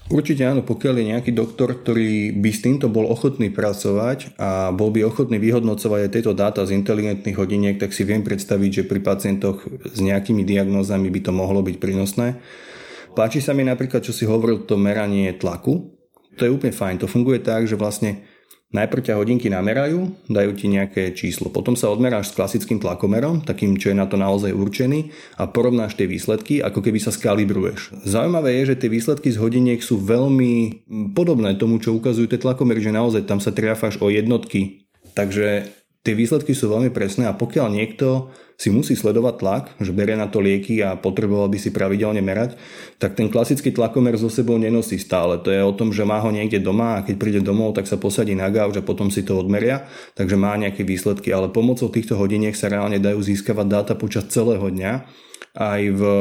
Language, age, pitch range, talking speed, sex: Slovak, 30-49, 100-115 Hz, 195 wpm, male